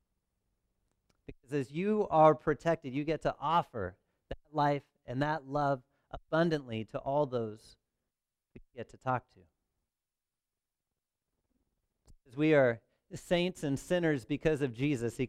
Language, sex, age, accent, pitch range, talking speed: English, male, 40-59, American, 110-165 Hz, 130 wpm